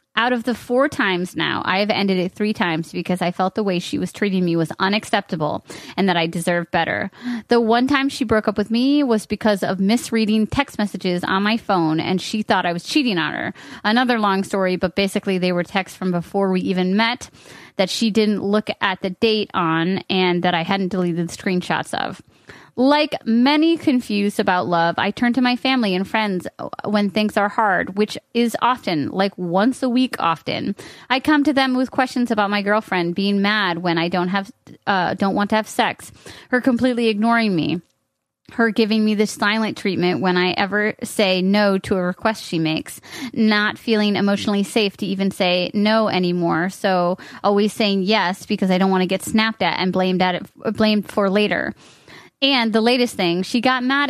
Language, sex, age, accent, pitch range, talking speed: English, female, 30-49, American, 185-225 Hz, 200 wpm